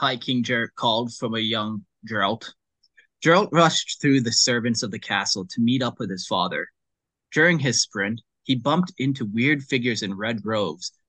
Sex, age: male, 20-39